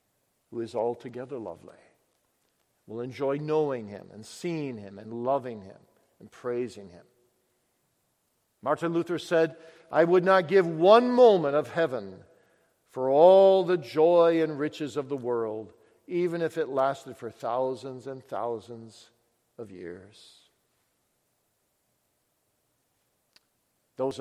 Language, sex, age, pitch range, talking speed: English, male, 60-79, 120-165 Hz, 120 wpm